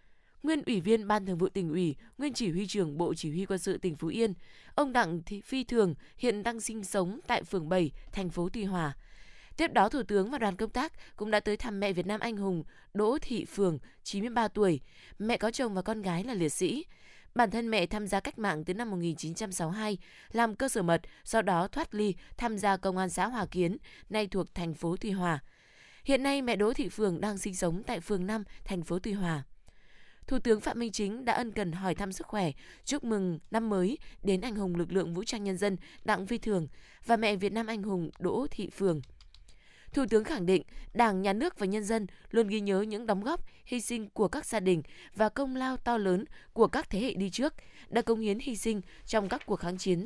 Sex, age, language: female, 20-39, Vietnamese